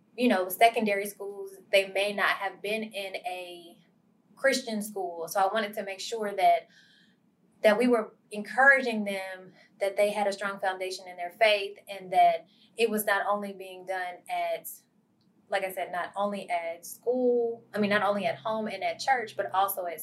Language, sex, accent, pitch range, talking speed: English, female, American, 185-220 Hz, 185 wpm